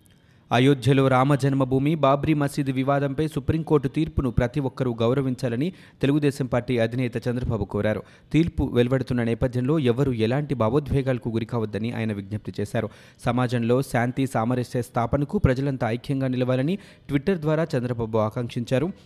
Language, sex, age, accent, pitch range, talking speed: Telugu, male, 30-49, native, 120-140 Hz, 115 wpm